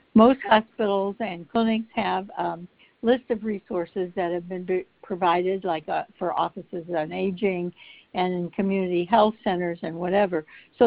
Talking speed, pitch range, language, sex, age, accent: 140 wpm, 180-215 Hz, English, female, 60-79, American